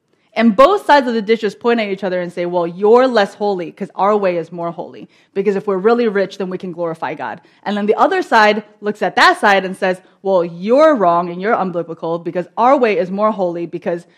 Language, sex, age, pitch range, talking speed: English, female, 20-39, 180-225 Hz, 235 wpm